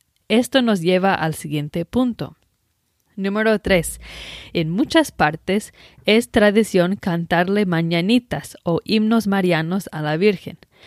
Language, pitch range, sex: English, 165-210 Hz, female